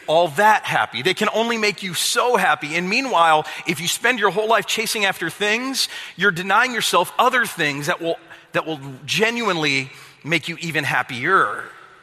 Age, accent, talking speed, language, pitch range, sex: 40-59, American, 175 wpm, English, 155-220 Hz, male